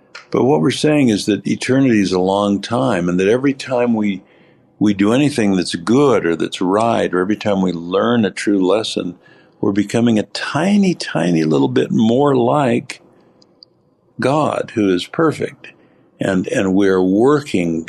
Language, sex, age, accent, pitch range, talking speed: English, male, 60-79, American, 90-115 Hz, 165 wpm